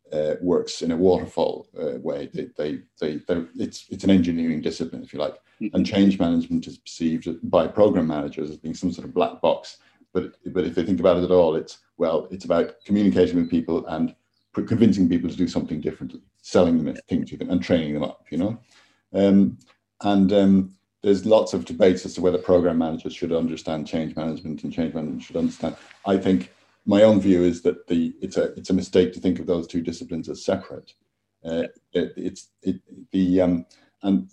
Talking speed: 205 wpm